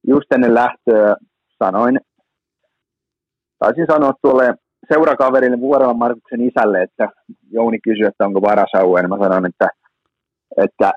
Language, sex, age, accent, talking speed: Finnish, male, 30-49, native, 110 wpm